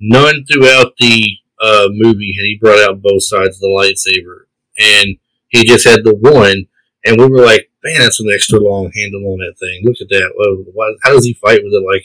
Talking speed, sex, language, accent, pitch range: 225 wpm, male, English, American, 110-135 Hz